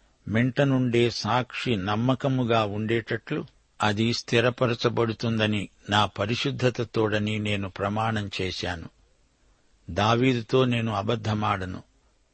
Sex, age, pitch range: male, 60-79, 110-130 Hz